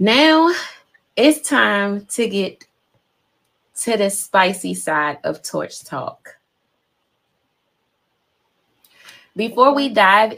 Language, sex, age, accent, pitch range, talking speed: English, female, 20-39, American, 175-220 Hz, 85 wpm